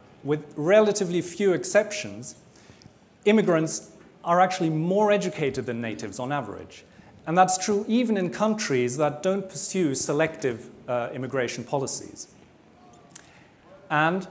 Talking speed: 115 wpm